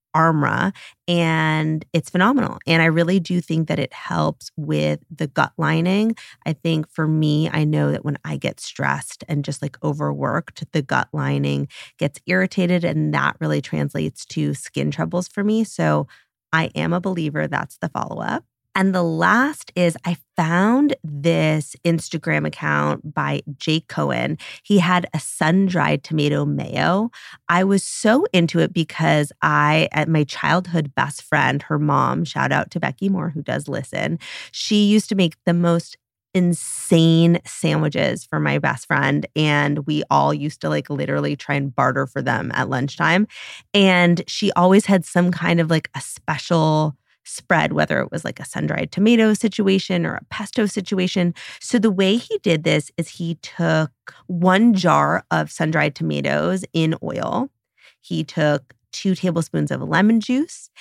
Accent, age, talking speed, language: American, 30-49, 165 wpm, English